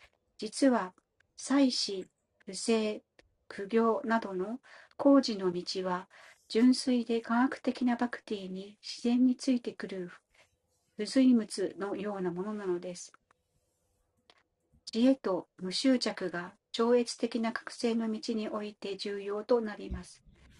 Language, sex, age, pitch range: Japanese, female, 40-59, 185-240 Hz